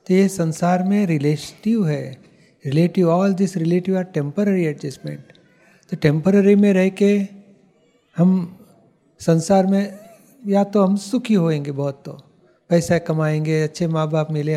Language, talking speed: Hindi, 140 wpm